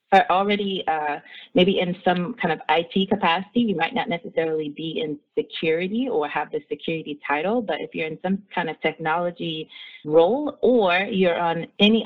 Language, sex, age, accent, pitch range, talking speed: English, female, 30-49, American, 150-195 Hz, 175 wpm